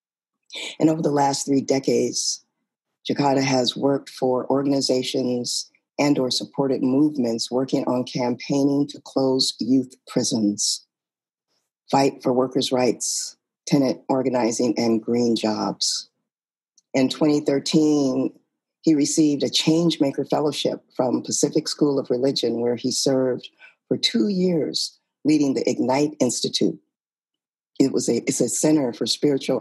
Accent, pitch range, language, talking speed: American, 120-140 Hz, English, 125 wpm